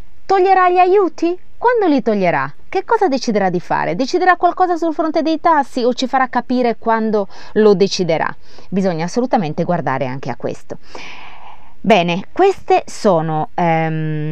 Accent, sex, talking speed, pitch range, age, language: native, female, 140 wpm, 160-225 Hz, 20-39, Italian